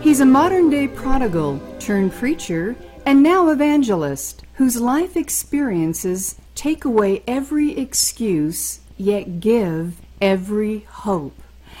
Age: 50-69